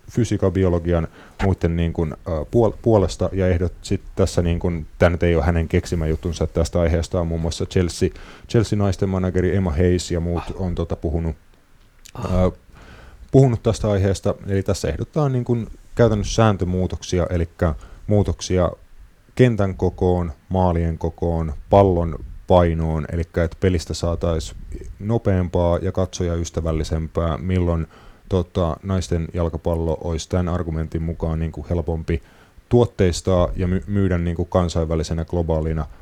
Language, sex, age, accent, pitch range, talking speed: Finnish, male, 30-49, native, 80-95 Hz, 130 wpm